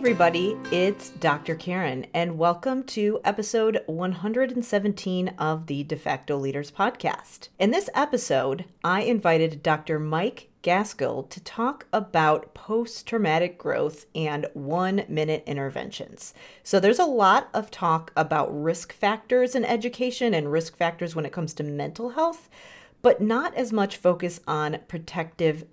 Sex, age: female, 40-59